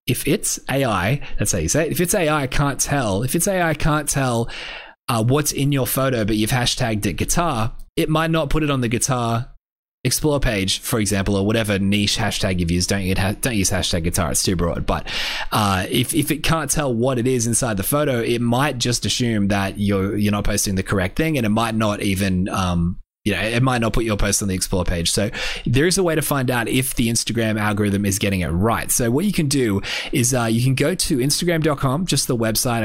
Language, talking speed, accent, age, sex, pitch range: English, 230 wpm, Australian, 20-39, male, 100-135 Hz